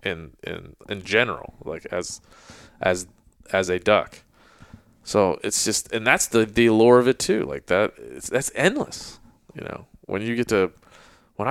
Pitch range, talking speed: 90-110 Hz, 175 wpm